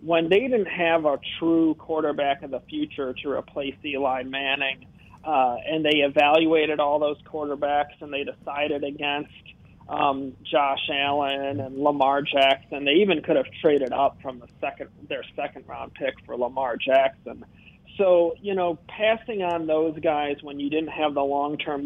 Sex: male